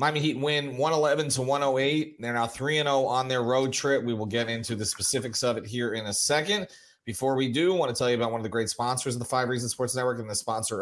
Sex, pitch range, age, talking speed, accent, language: male, 115-140 Hz, 30-49, 260 wpm, American, English